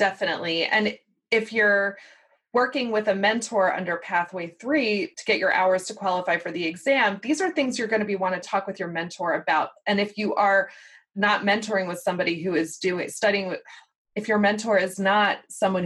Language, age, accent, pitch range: English, 20-39, American, 185-230 Hz